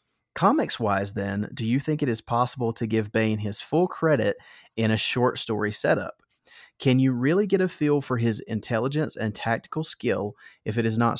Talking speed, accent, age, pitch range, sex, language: 190 wpm, American, 30-49, 110-130 Hz, male, English